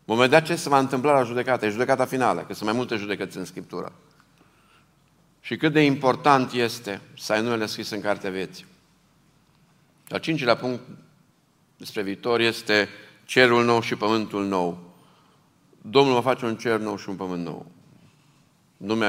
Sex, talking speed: male, 160 wpm